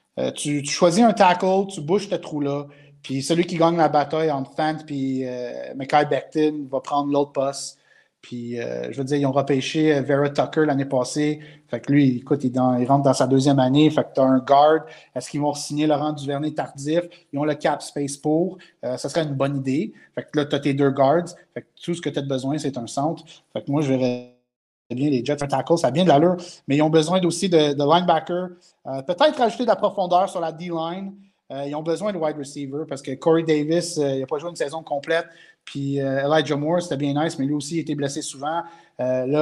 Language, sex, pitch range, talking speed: French, male, 140-170 Hz, 240 wpm